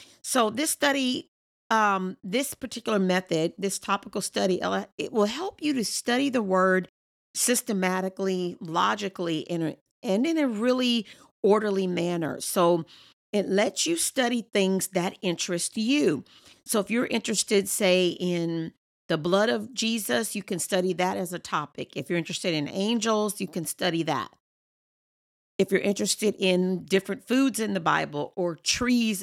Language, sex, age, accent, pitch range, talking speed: English, female, 40-59, American, 180-230 Hz, 150 wpm